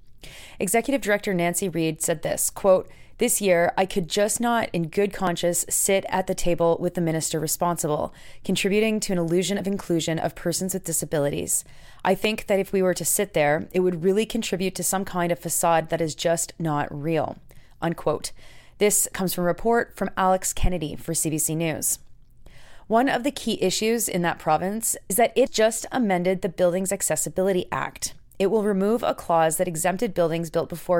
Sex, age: female, 30-49